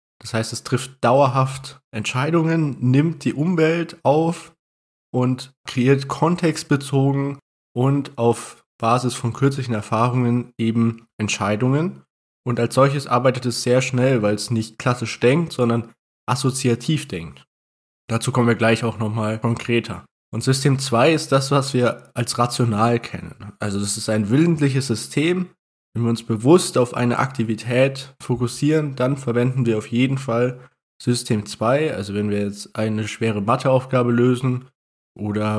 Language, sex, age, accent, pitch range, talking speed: German, male, 20-39, German, 110-135 Hz, 140 wpm